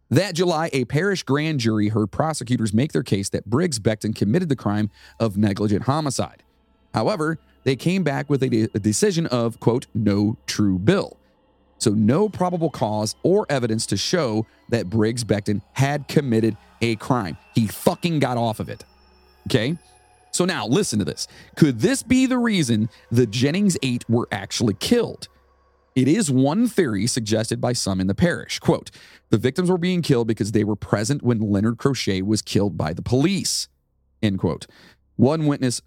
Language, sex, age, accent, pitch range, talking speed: English, male, 40-59, American, 105-140 Hz, 175 wpm